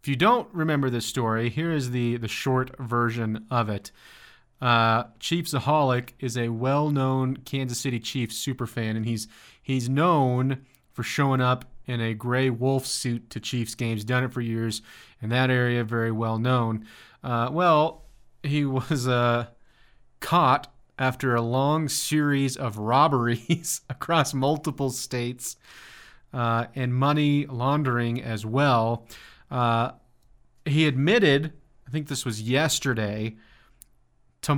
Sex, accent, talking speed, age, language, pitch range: male, American, 135 wpm, 30-49, English, 120-140 Hz